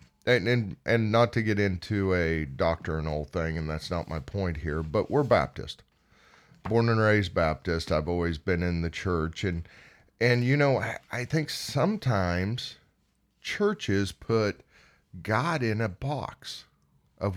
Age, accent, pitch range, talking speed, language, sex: 40-59, American, 85-120 Hz, 150 wpm, English, male